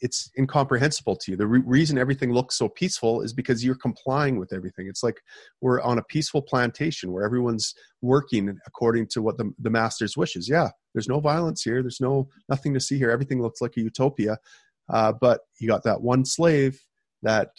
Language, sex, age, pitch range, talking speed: English, male, 30-49, 110-130 Hz, 200 wpm